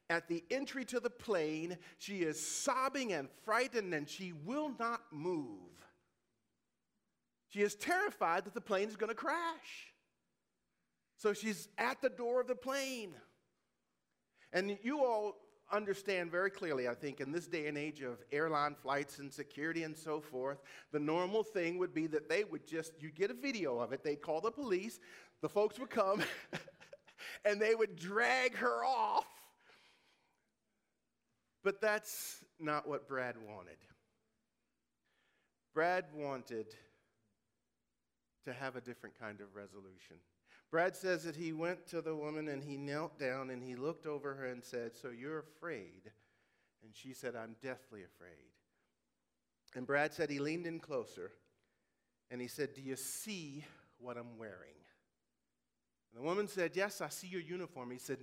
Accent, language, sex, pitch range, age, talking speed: American, English, male, 130-205 Hz, 40-59, 160 wpm